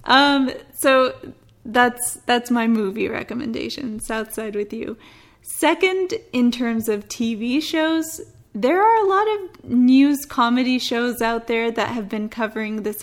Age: 10-29